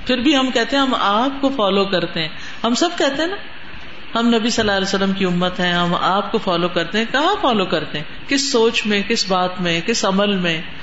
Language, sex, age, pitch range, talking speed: Urdu, female, 50-69, 175-225 Hz, 245 wpm